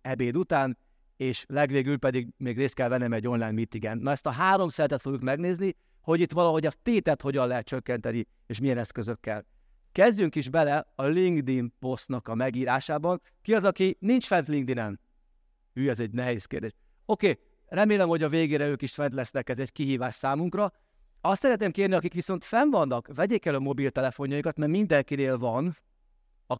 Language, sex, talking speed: Hungarian, male, 175 wpm